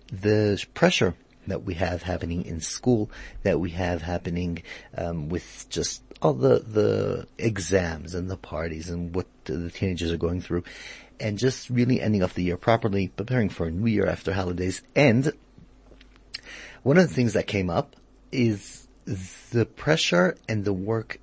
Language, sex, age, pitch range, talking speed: English, male, 40-59, 90-115 Hz, 165 wpm